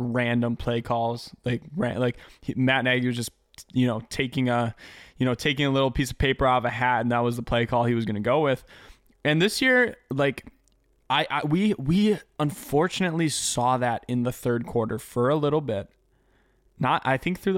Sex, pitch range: male, 120-145 Hz